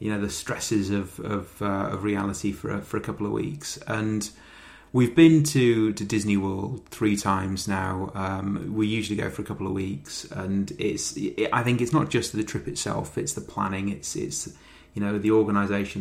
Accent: British